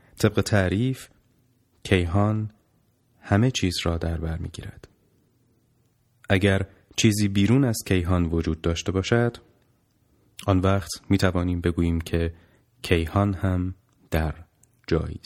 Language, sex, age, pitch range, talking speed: Persian, male, 30-49, 90-115 Hz, 100 wpm